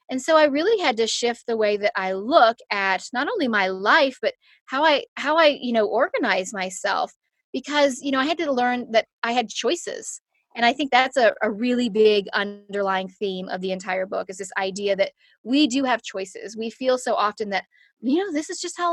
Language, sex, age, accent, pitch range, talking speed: English, female, 20-39, American, 220-320 Hz, 220 wpm